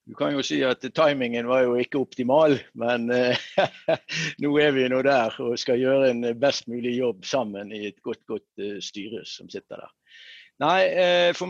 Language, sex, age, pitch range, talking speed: English, male, 60-79, 120-175 Hz, 185 wpm